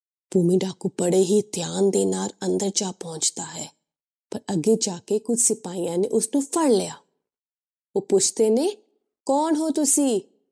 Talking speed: 150 wpm